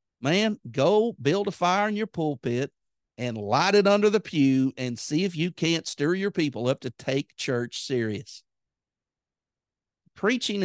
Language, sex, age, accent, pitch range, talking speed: English, male, 50-69, American, 125-165 Hz, 160 wpm